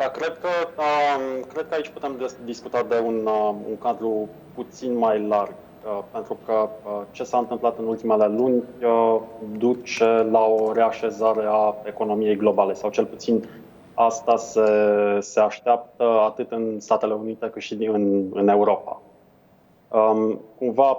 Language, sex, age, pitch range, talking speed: Romanian, male, 20-39, 110-125 Hz, 130 wpm